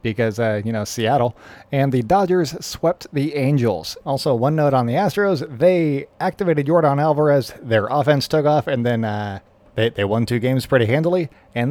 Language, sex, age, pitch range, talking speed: English, male, 30-49, 115-150 Hz, 185 wpm